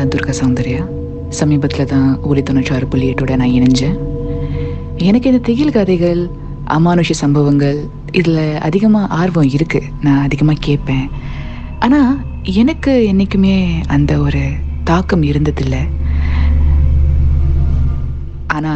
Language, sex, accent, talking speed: Tamil, female, native, 50 wpm